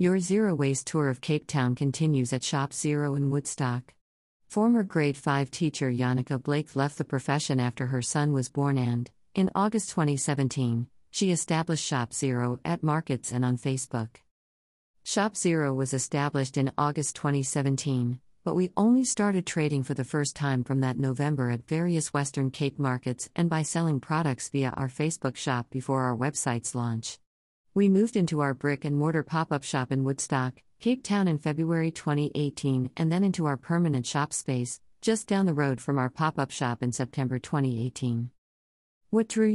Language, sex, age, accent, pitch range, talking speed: English, female, 50-69, American, 130-160 Hz, 165 wpm